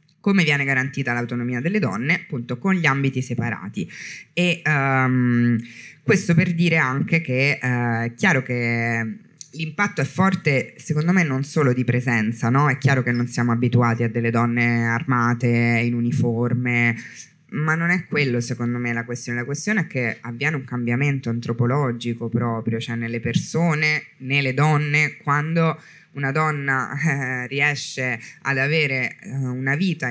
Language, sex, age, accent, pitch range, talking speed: Italian, female, 20-39, native, 120-155 Hz, 150 wpm